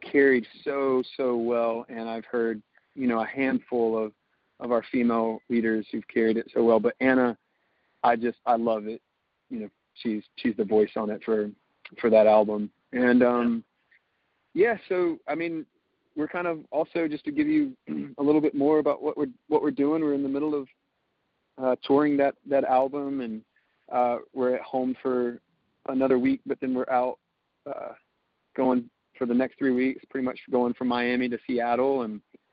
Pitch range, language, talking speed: 120-135 Hz, English, 185 wpm